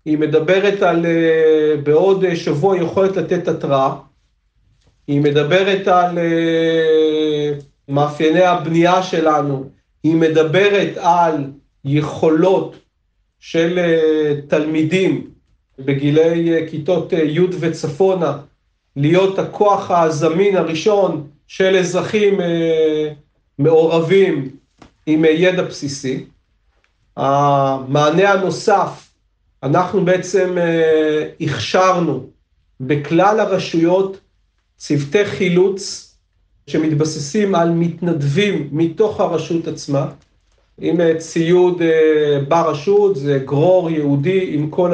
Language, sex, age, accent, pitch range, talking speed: Hebrew, male, 40-59, native, 150-185 Hz, 80 wpm